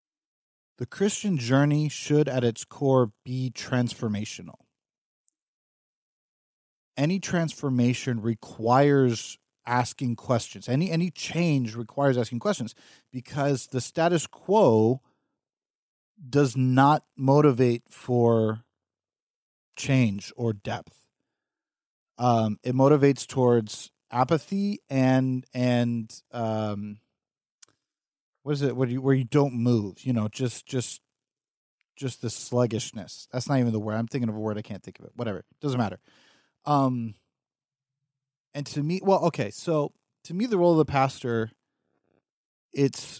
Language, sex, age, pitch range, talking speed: English, male, 40-59, 115-145 Hz, 125 wpm